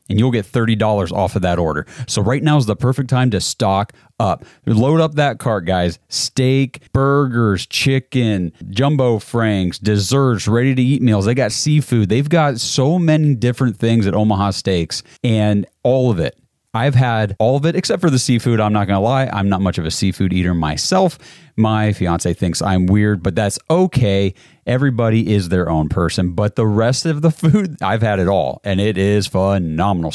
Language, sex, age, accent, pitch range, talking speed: English, male, 30-49, American, 100-130 Hz, 190 wpm